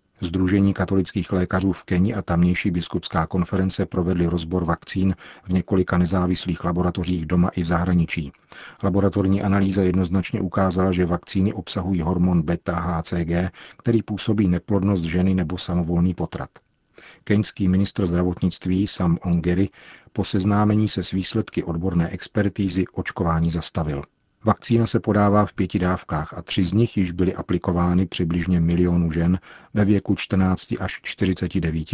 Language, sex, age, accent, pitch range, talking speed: Czech, male, 40-59, native, 85-95 Hz, 135 wpm